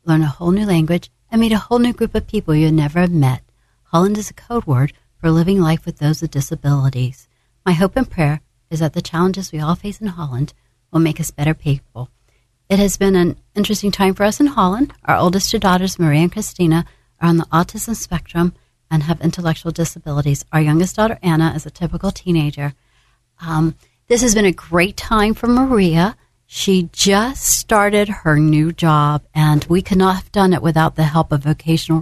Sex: female